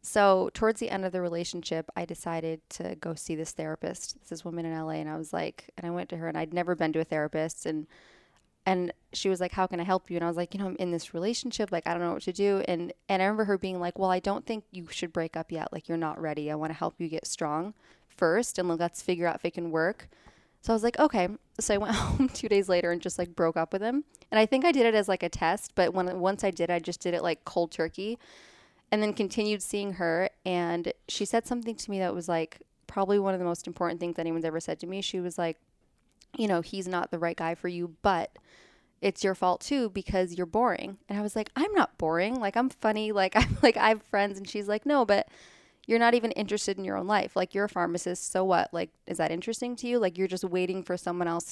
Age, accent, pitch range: 20-39, American, 170-205 Hz